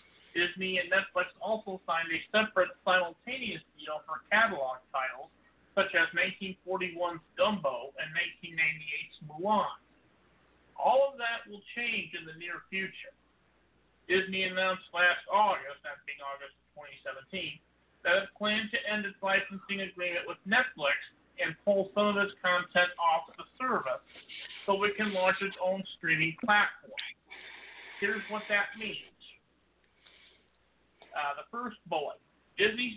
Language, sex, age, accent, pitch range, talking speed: English, male, 50-69, American, 175-210 Hz, 135 wpm